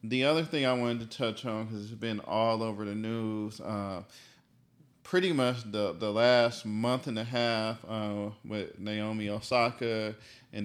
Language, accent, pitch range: English, American, 105-125 Hz